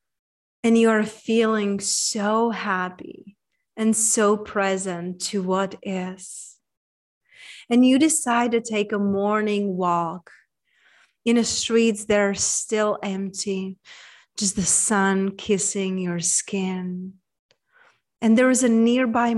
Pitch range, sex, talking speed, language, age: 195-235 Hz, female, 120 wpm, English, 30-49